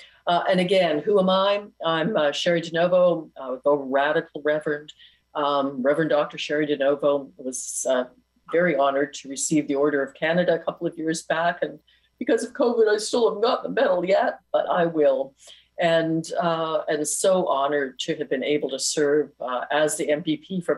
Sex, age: female, 50-69